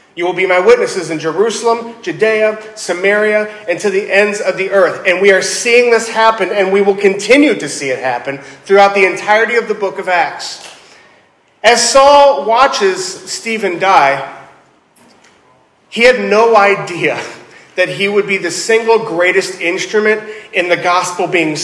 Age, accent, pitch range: 30-49, American, 155-210 Hz